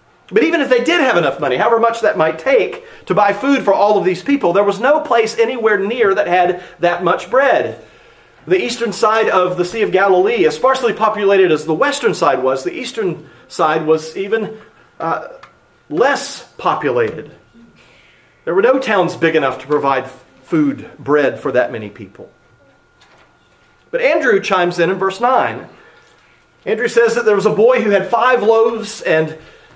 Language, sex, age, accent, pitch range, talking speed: English, male, 40-59, American, 175-265 Hz, 180 wpm